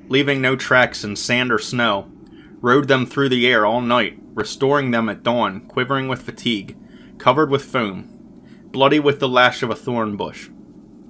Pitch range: 110-130 Hz